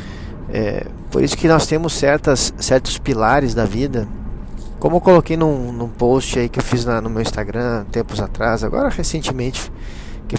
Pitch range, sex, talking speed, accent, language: 105-130 Hz, male, 175 wpm, Brazilian, Portuguese